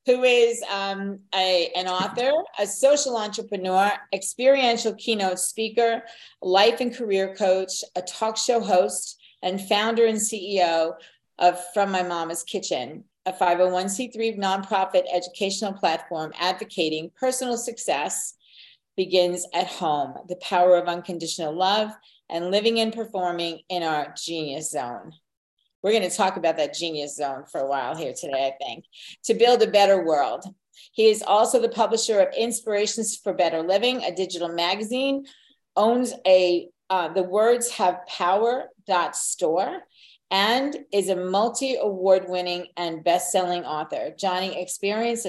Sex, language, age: female, English, 40-59